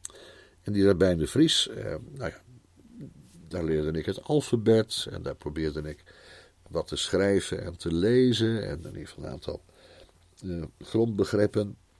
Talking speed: 155 wpm